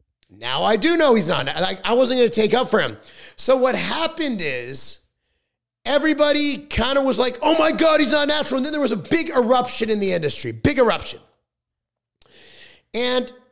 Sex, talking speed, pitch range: male, 185 wpm, 195-255 Hz